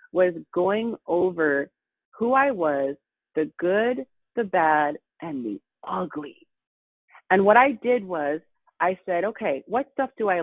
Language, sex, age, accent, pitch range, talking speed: English, female, 30-49, American, 155-245 Hz, 145 wpm